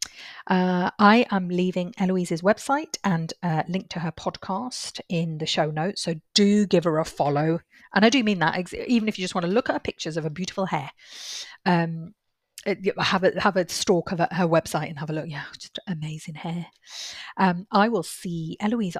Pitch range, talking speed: 165-200 Hz, 200 wpm